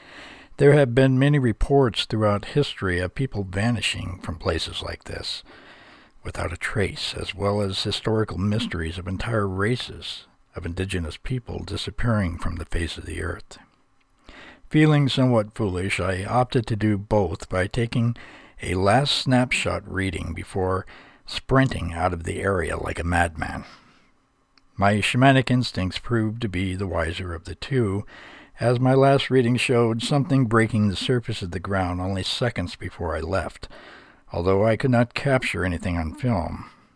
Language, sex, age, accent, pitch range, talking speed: English, male, 60-79, American, 90-120 Hz, 155 wpm